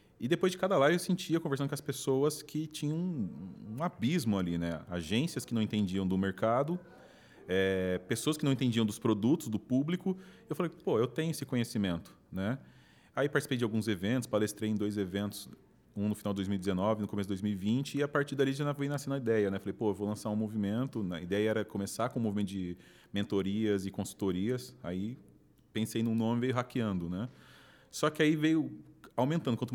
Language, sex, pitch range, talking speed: Portuguese, male, 100-140 Hz, 200 wpm